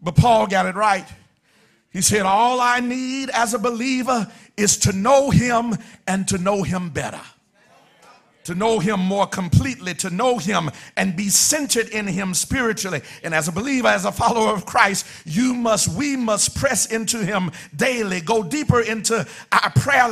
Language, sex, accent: English, male, American